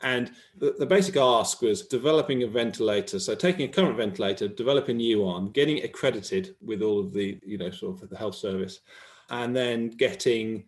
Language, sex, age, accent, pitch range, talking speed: English, male, 30-49, British, 105-145 Hz, 195 wpm